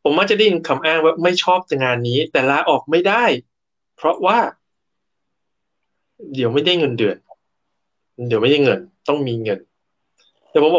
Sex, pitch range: male, 130-190 Hz